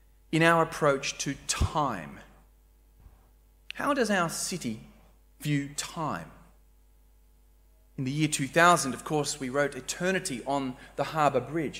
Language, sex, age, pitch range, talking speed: English, male, 30-49, 135-175 Hz, 120 wpm